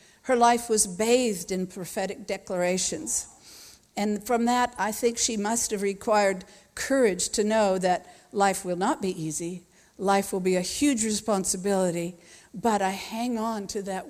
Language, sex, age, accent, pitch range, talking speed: English, female, 50-69, American, 190-240 Hz, 160 wpm